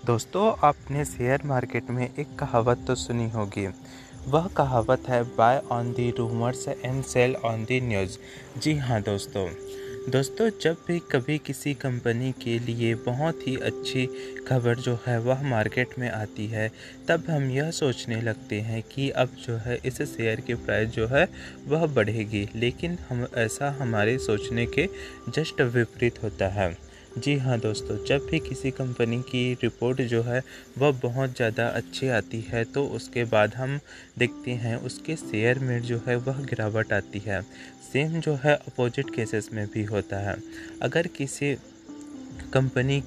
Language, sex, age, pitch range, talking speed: Hindi, male, 20-39, 115-135 Hz, 160 wpm